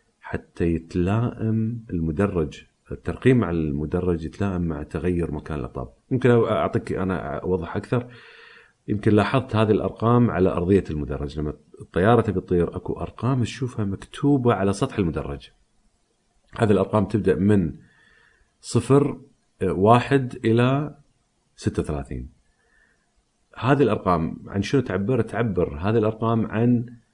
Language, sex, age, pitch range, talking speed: Arabic, male, 40-59, 90-120 Hz, 115 wpm